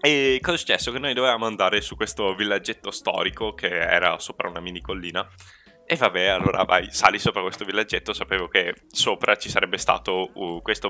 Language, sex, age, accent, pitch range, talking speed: Italian, male, 10-29, native, 90-115 Hz, 180 wpm